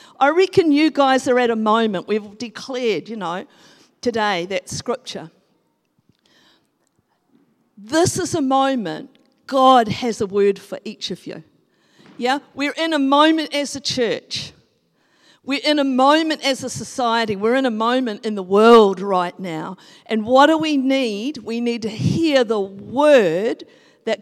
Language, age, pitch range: English, 50-69, 210-285 Hz